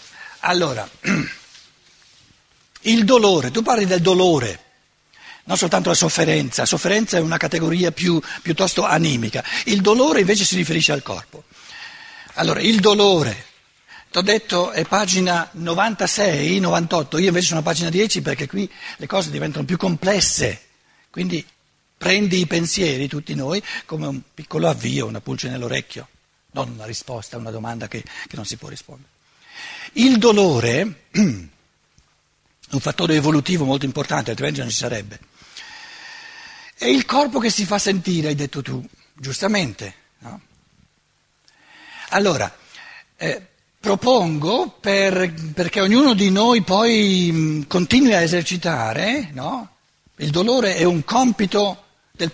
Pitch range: 145-205 Hz